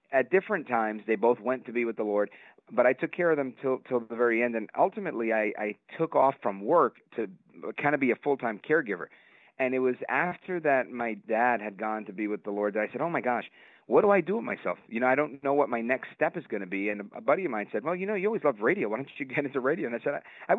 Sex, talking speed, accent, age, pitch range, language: male, 295 wpm, American, 40-59, 115-160 Hz, English